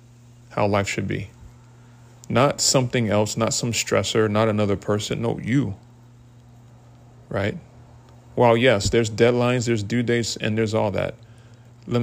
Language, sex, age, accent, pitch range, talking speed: English, male, 30-49, American, 100-120 Hz, 140 wpm